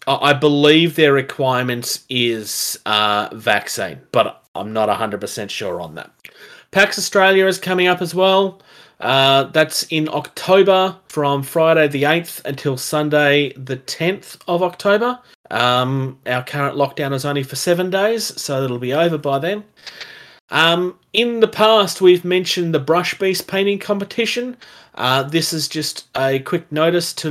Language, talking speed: English, 155 wpm